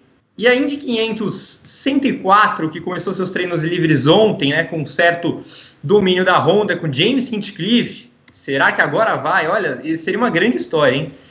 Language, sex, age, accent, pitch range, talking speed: Portuguese, male, 20-39, Brazilian, 175-225 Hz, 155 wpm